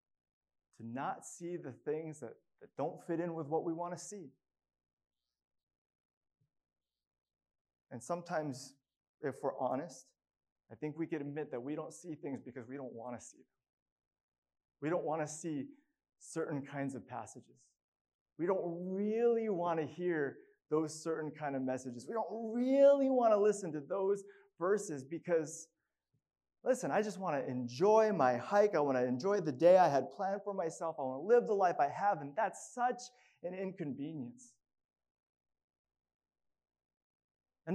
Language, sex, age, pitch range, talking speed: English, male, 30-49, 120-190 Hz, 160 wpm